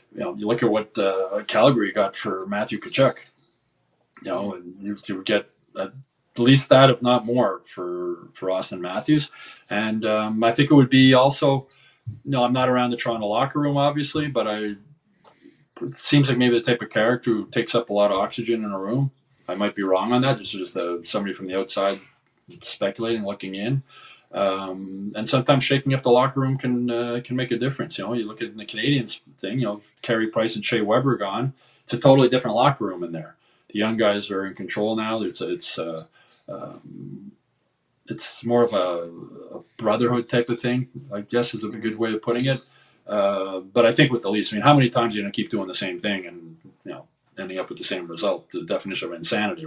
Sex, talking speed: male, 225 wpm